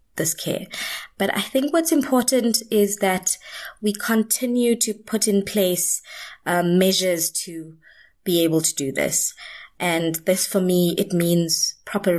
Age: 20-39